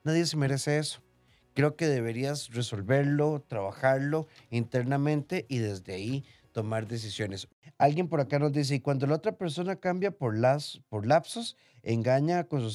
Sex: male